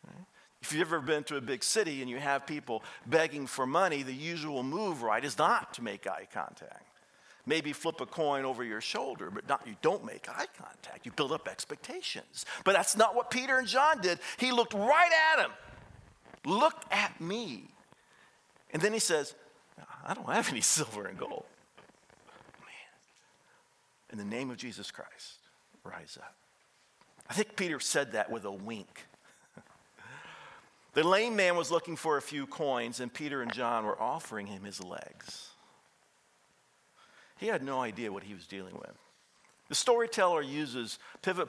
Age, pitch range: 50-69, 140-225 Hz